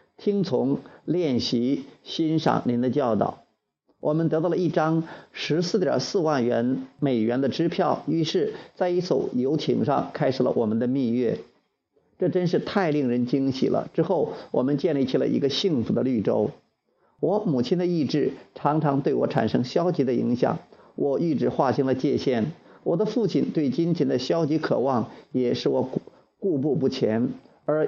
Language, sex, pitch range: Chinese, male, 125-165 Hz